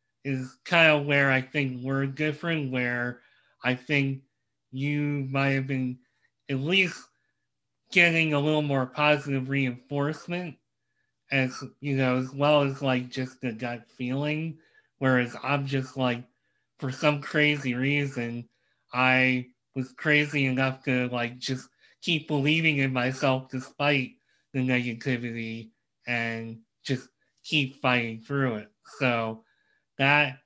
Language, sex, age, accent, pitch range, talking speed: English, male, 30-49, American, 125-145 Hz, 125 wpm